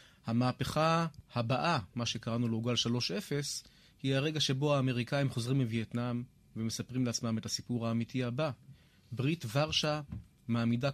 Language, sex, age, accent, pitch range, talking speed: Hebrew, male, 30-49, native, 120-145 Hz, 120 wpm